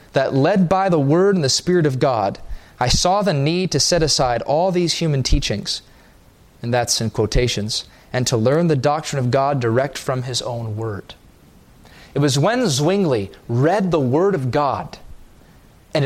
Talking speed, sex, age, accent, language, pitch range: 175 wpm, male, 30-49, American, English, 125-190 Hz